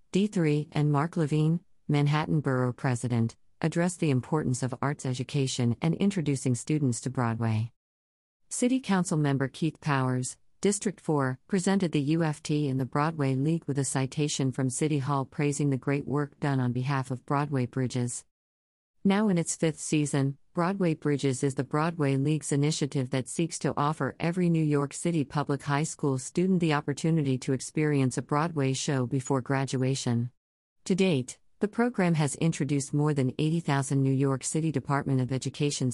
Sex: female